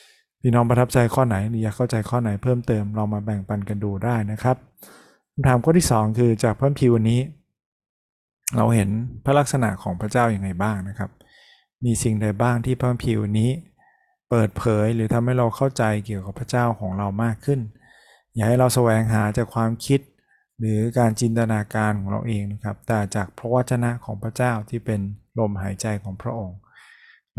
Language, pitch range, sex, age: Thai, 105-125 Hz, male, 20-39